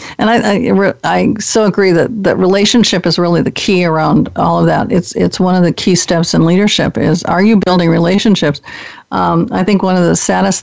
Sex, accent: female, American